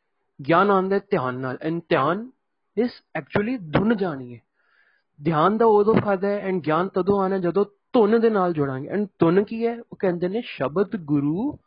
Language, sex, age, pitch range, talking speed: Punjabi, male, 30-49, 165-215 Hz, 175 wpm